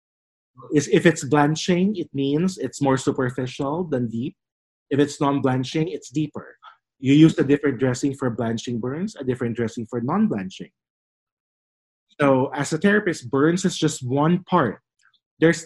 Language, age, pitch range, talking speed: English, 20-39, 130-165 Hz, 145 wpm